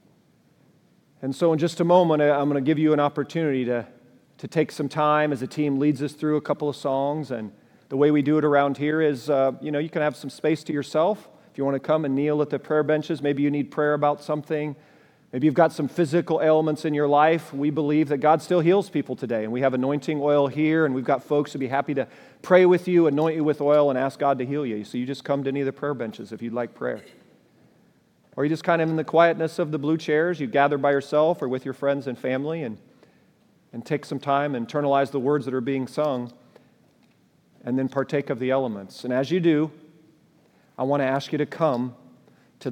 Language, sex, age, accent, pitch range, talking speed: English, male, 40-59, American, 140-160 Hz, 245 wpm